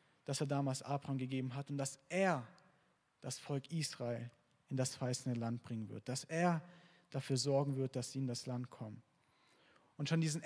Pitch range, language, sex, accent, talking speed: 130-155 Hz, German, male, German, 190 wpm